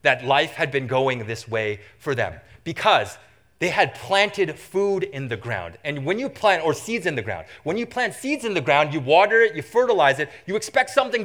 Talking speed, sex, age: 225 wpm, male, 30-49